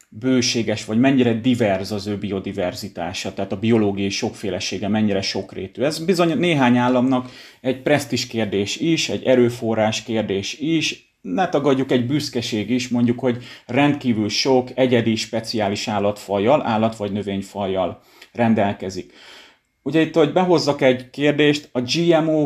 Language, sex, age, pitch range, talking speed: Hungarian, male, 30-49, 105-130 Hz, 130 wpm